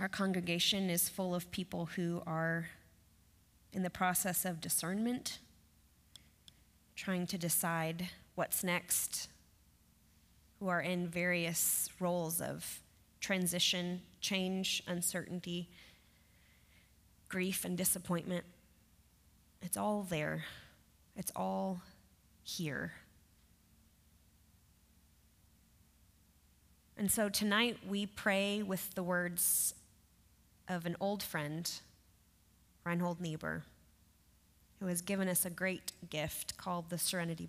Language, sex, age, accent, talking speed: English, female, 20-39, American, 95 wpm